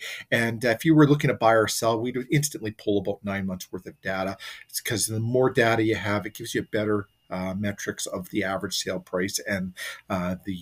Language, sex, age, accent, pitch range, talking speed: English, male, 40-59, American, 110-165 Hz, 230 wpm